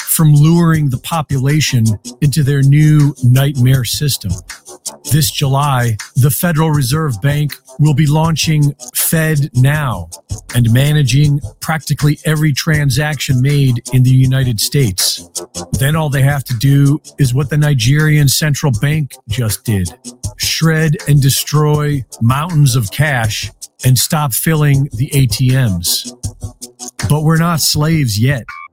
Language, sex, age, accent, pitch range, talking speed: English, male, 40-59, American, 120-150 Hz, 125 wpm